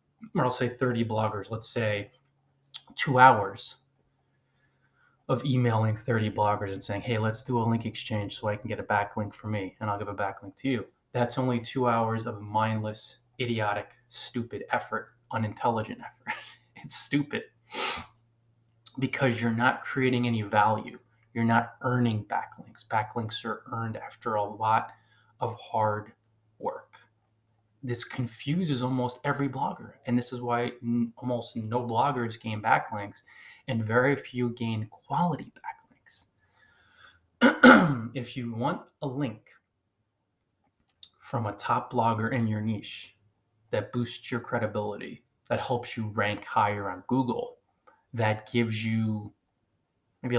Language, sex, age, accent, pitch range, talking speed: English, male, 20-39, American, 110-125 Hz, 135 wpm